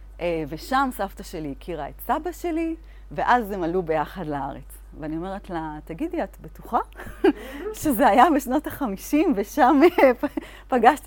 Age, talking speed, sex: 30-49, 130 wpm, female